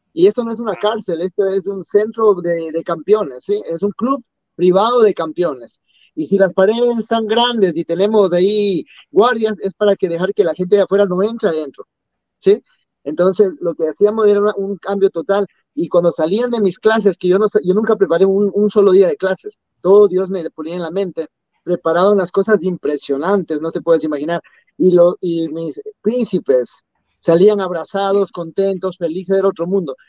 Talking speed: 195 wpm